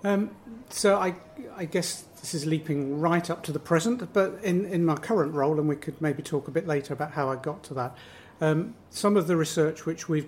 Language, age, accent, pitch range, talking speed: English, 50-69, British, 140-170 Hz, 235 wpm